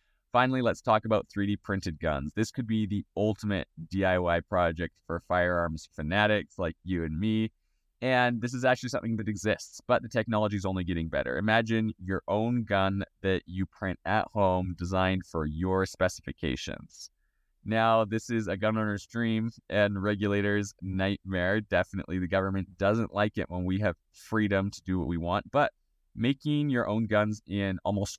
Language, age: English, 20-39